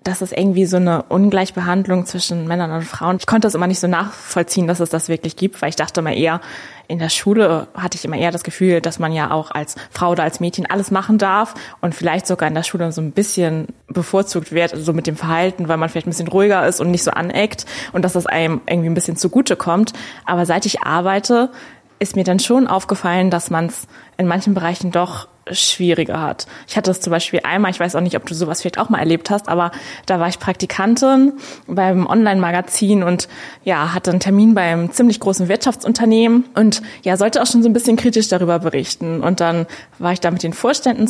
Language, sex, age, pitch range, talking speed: German, female, 20-39, 175-210 Hz, 230 wpm